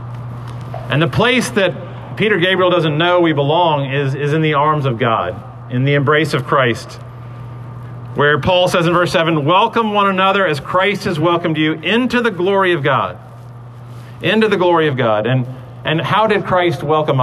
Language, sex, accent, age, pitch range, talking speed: English, male, American, 40-59, 120-180 Hz, 180 wpm